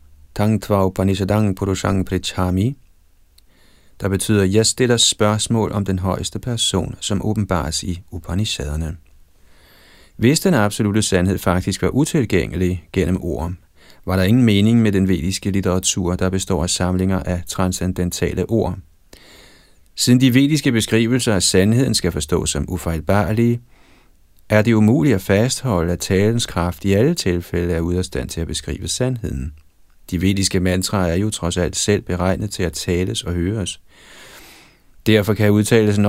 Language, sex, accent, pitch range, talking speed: Danish, male, native, 90-105 Hz, 140 wpm